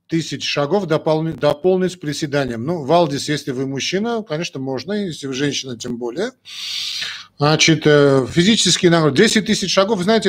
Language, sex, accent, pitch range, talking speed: Russian, male, native, 130-175 Hz, 140 wpm